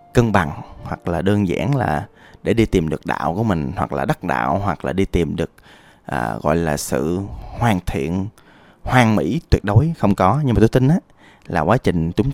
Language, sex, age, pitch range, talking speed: Vietnamese, male, 20-39, 90-130 Hz, 215 wpm